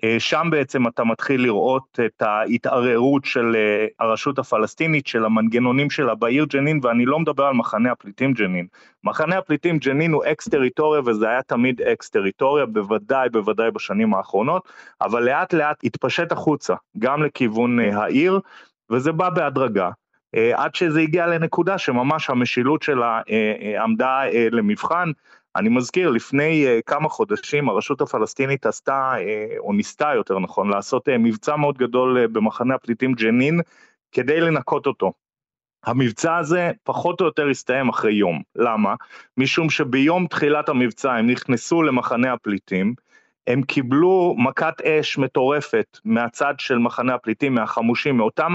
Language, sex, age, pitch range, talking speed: Hebrew, male, 30-49, 115-160 Hz, 130 wpm